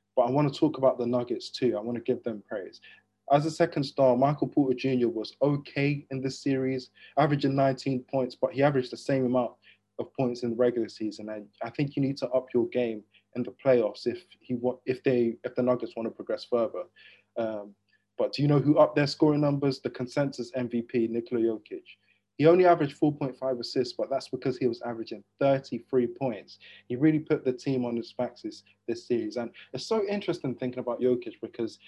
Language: English